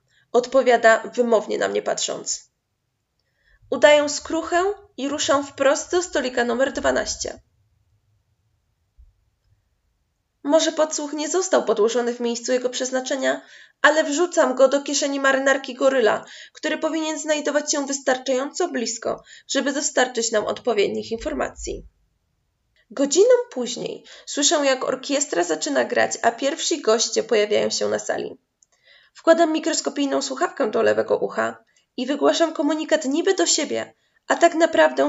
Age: 20-39